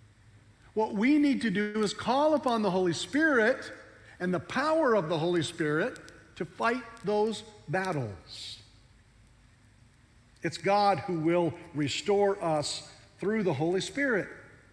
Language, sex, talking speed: English, male, 130 wpm